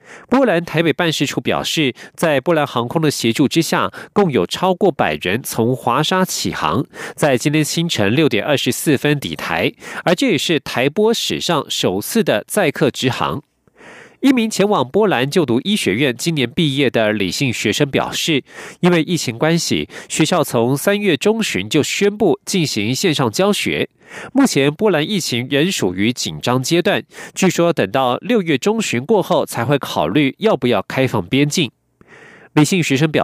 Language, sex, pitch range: German, male, 125-190 Hz